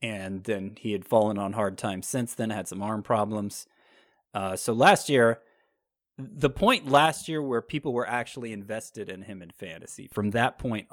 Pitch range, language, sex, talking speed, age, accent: 105-130 Hz, English, male, 185 wpm, 30-49, American